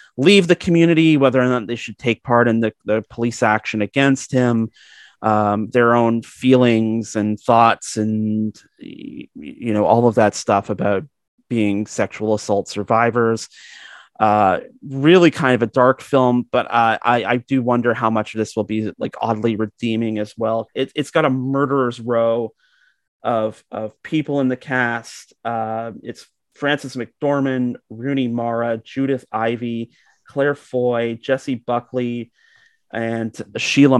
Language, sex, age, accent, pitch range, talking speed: English, male, 30-49, American, 110-135 Hz, 150 wpm